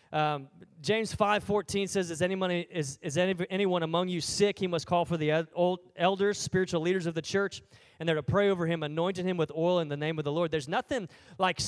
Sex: male